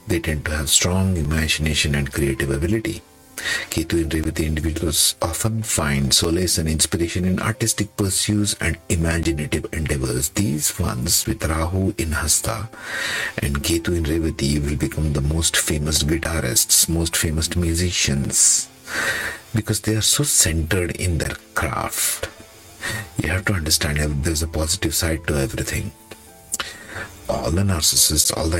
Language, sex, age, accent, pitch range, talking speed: English, male, 50-69, Indian, 80-110 Hz, 130 wpm